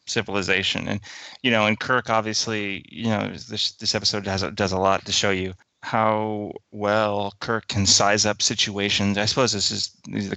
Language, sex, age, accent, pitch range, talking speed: English, male, 30-49, American, 95-105 Hz, 195 wpm